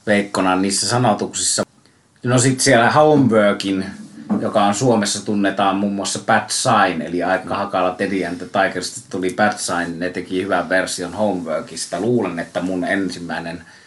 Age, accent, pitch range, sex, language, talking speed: 30-49, native, 90-110 Hz, male, Finnish, 145 wpm